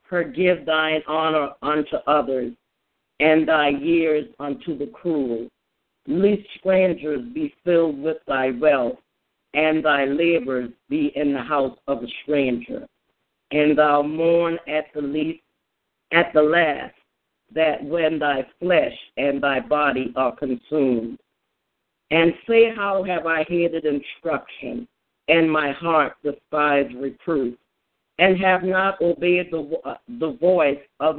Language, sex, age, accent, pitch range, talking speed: English, female, 50-69, American, 145-170 Hz, 125 wpm